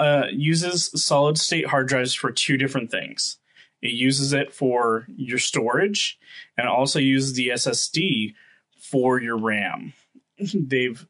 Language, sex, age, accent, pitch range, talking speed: English, male, 20-39, American, 120-145 Hz, 140 wpm